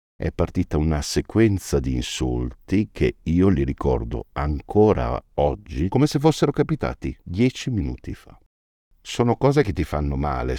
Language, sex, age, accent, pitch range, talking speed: Italian, male, 50-69, native, 70-95 Hz, 140 wpm